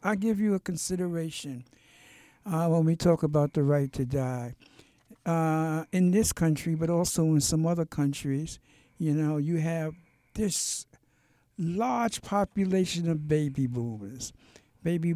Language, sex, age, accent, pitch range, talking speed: English, male, 60-79, American, 145-170 Hz, 140 wpm